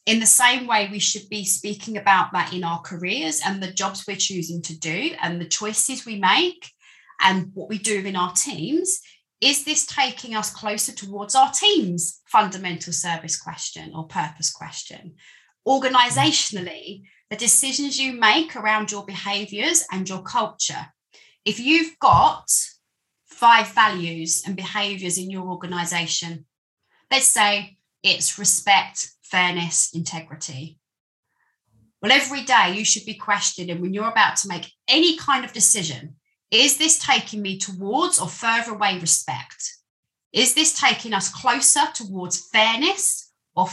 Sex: female